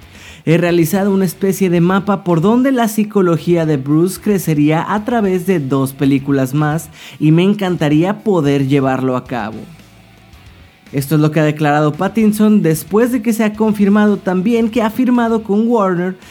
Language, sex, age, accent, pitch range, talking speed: Spanish, male, 30-49, Mexican, 140-200 Hz, 165 wpm